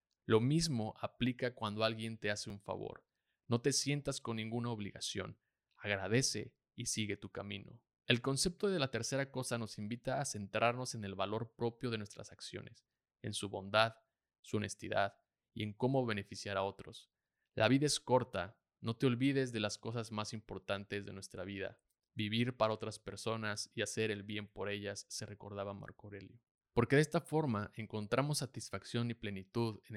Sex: male